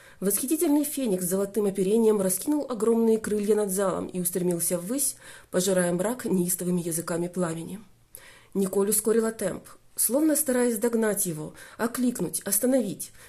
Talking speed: 120 wpm